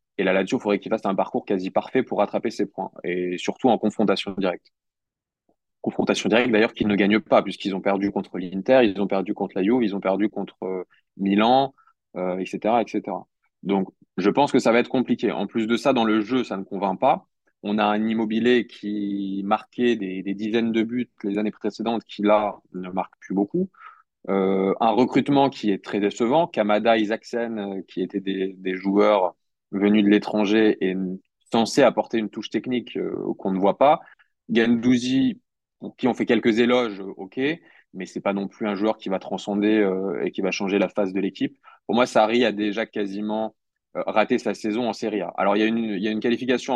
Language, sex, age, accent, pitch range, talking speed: French, male, 20-39, French, 100-115 Hz, 205 wpm